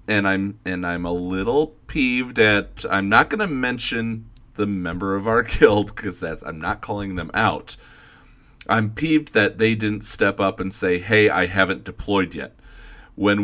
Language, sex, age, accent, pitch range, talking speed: English, male, 40-59, American, 95-115 Hz, 180 wpm